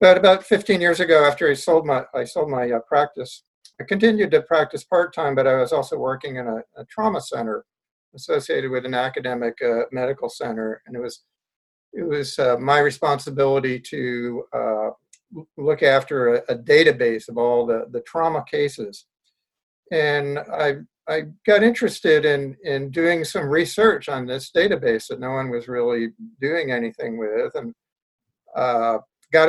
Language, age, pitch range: English, 50-69, 125-165 Hz